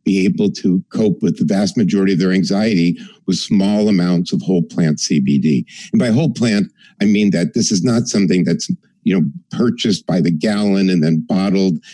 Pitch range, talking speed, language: 85-145 Hz, 195 wpm, English